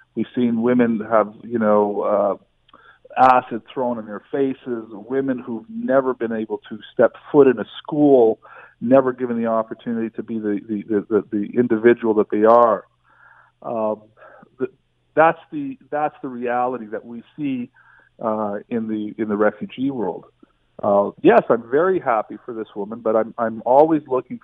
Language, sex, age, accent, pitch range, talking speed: English, male, 40-59, American, 105-125 Hz, 160 wpm